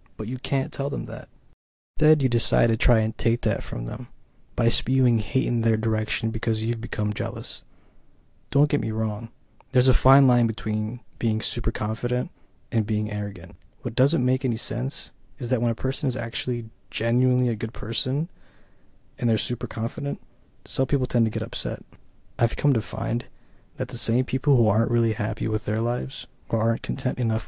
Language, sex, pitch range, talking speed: English, male, 110-130 Hz, 190 wpm